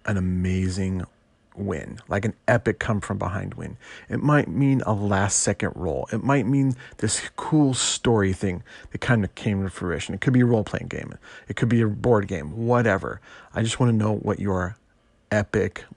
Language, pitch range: English, 95-120 Hz